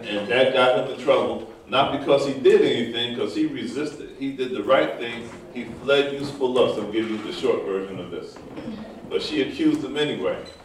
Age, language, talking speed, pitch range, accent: 40-59, English, 205 wpm, 110-175 Hz, American